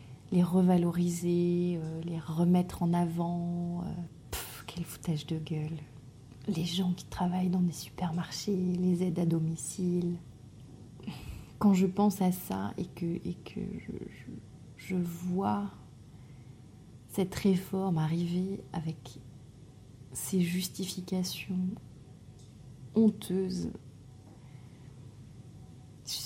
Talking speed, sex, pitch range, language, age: 100 wpm, female, 135-180 Hz, French, 30-49